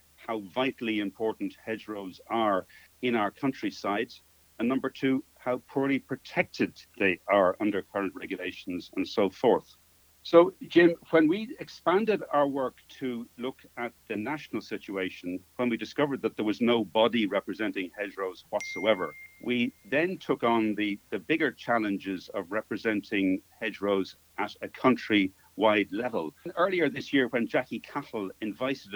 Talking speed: 145 wpm